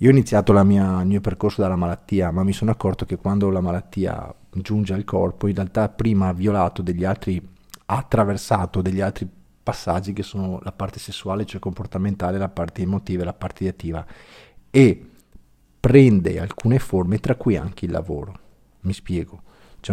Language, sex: Italian, male